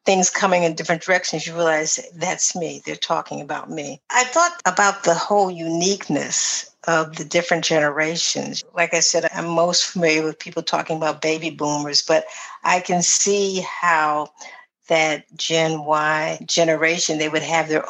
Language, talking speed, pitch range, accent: English, 160 wpm, 160-190 Hz, American